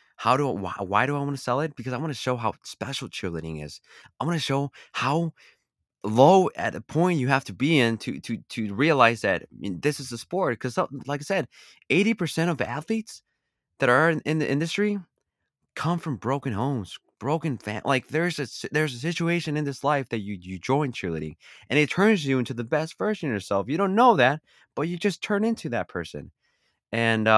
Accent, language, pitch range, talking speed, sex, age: American, English, 115-155 Hz, 215 wpm, male, 20-39